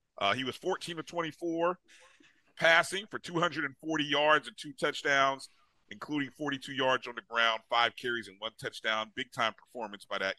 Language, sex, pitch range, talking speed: English, male, 120-160 Hz, 155 wpm